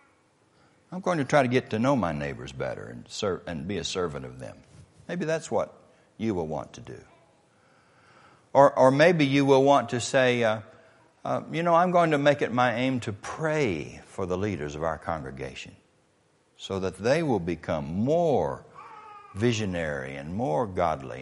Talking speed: 180 wpm